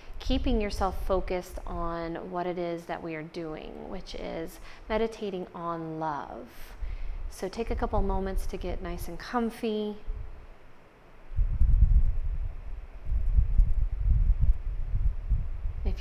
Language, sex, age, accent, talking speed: English, female, 30-49, American, 100 wpm